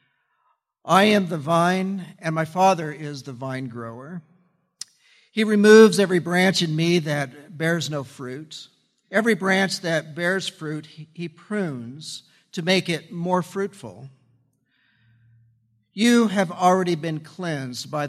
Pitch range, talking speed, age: 150-190 Hz, 130 wpm, 50-69